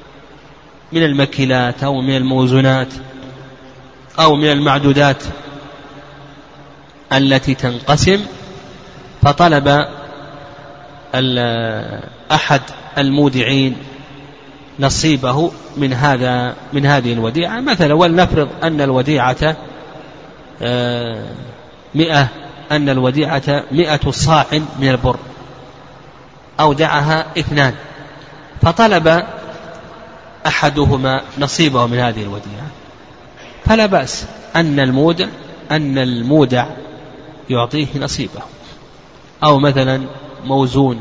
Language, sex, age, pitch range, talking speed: Arabic, male, 30-49, 130-150 Hz, 75 wpm